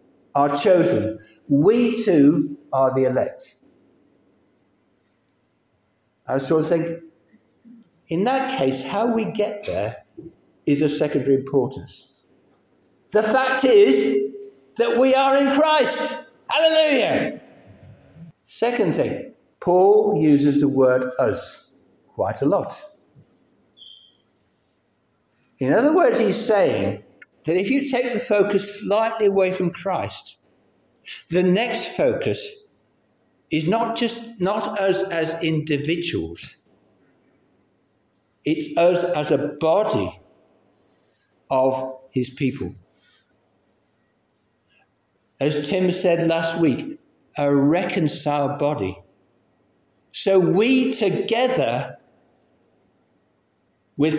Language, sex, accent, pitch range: English, male, British, 145-220 Hz